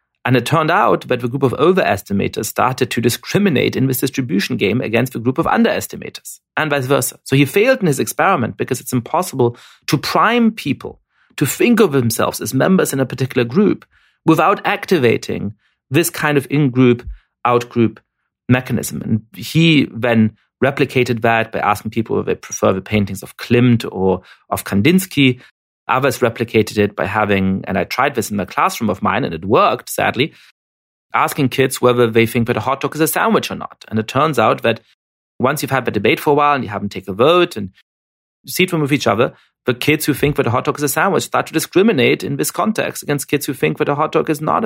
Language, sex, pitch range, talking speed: English, male, 110-150 Hz, 210 wpm